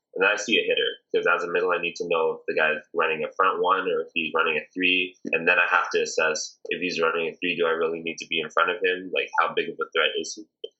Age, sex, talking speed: 20-39, male, 310 wpm